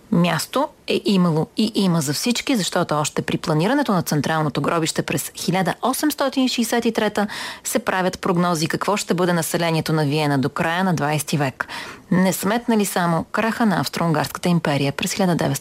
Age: 30-49